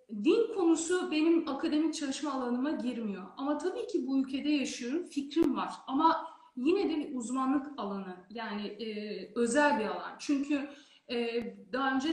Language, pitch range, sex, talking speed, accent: Turkish, 240-315 Hz, female, 145 wpm, native